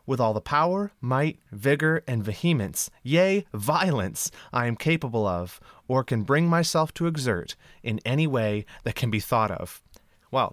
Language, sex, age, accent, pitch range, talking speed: English, male, 30-49, American, 115-175 Hz, 165 wpm